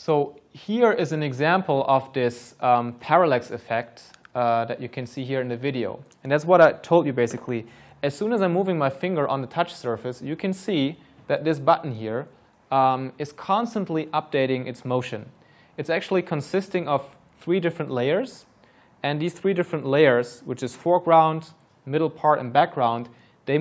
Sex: male